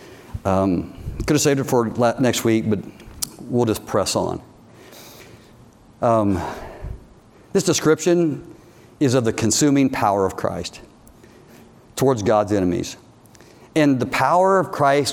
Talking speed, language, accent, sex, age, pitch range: 125 wpm, English, American, male, 50-69, 105-135 Hz